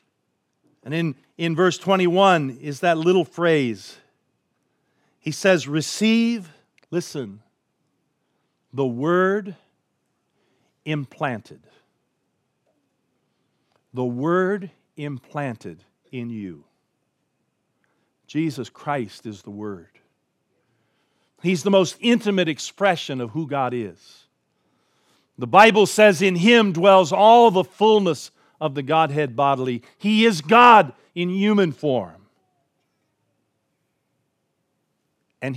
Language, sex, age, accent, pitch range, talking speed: English, male, 50-69, American, 125-190 Hz, 95 wpm